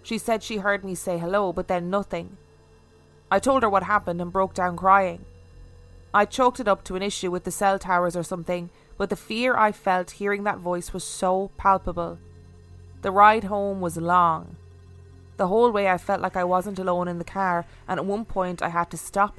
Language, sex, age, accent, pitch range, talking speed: English, female, 20-39, Irish, 150-185 Hz, 210 wpm